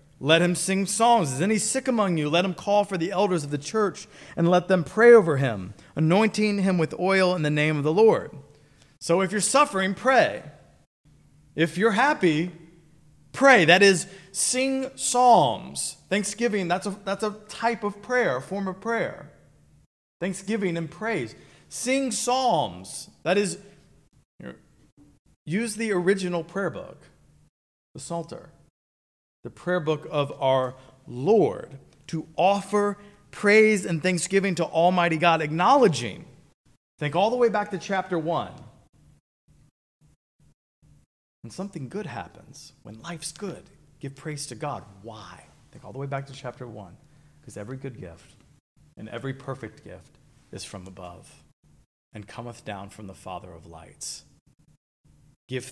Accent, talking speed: American, 145 wpm